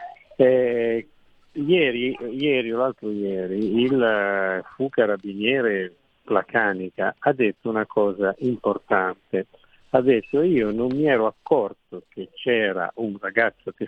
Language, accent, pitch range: Italian, native, 100-125 Hz